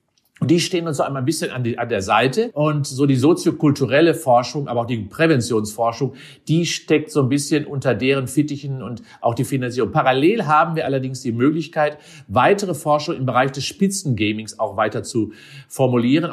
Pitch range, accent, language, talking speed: 130-160 Hz, German, German, 185 wpm